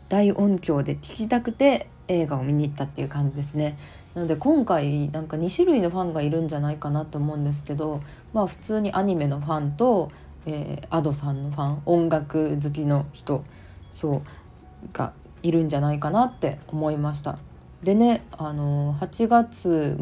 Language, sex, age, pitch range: Japanese, female, 20-39, 145-200 Hz